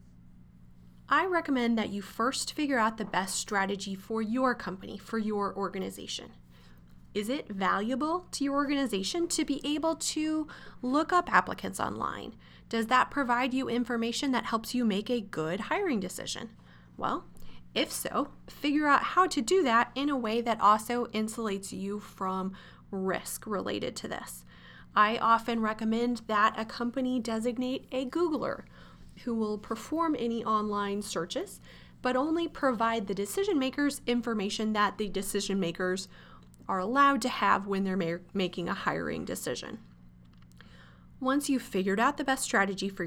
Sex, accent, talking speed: female, American, 150 wpm